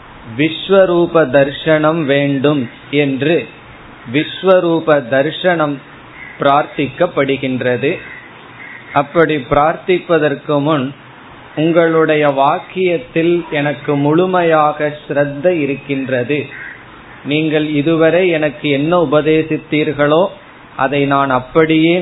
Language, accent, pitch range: Tamil, native, 135-160 Hz